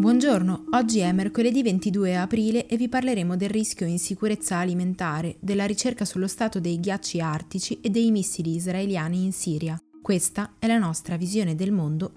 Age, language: 20-39, Italian